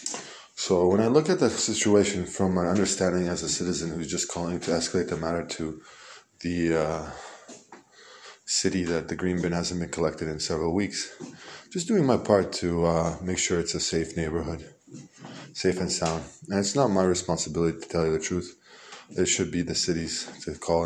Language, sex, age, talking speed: Hebrew, male, 20-39, 190 wpm